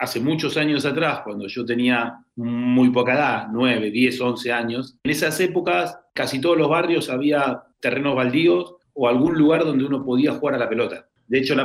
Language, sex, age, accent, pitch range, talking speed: Spanish, male, 40-59, Argentinian, 120-150 Hz, 190 wpm